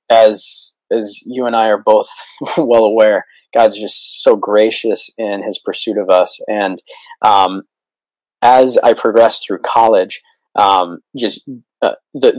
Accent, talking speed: American, 140 wpm